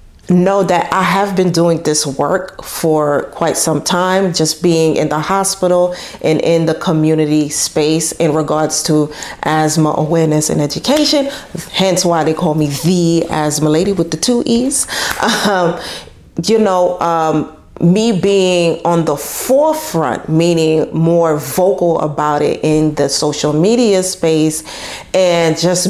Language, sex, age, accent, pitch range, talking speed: English, female, 30-49, American, 155-180 Hz, 145 wpm